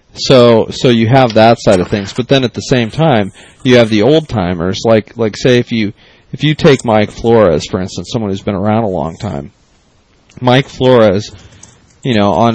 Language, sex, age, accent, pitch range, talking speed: English, male, 40-59, American, 100-120 Hz, 205 wpm